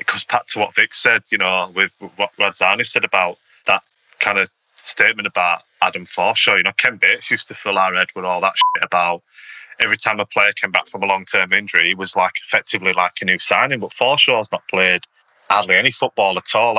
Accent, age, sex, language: British, 20-39, male, English